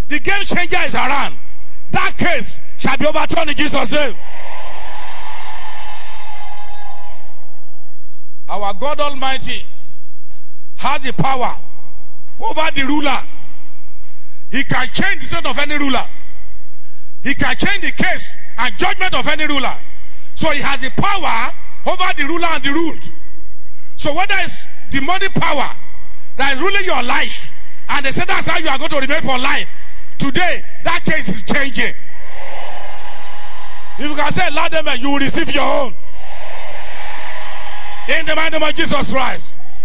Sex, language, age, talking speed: male, English, 50-69, 140 wpm